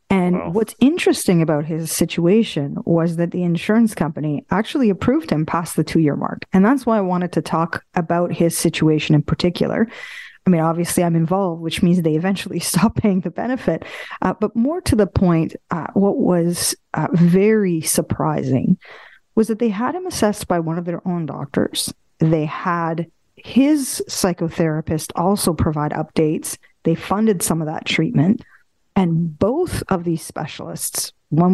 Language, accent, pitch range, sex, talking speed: English, American, 160-215 Hz, female, 165 wpm